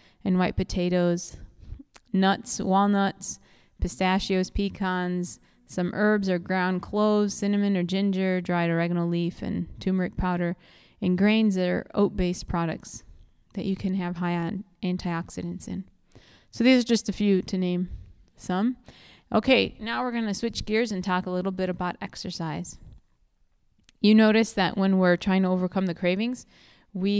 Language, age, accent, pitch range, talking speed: English, 20-39, American, 180-205 Hz, 150 wpm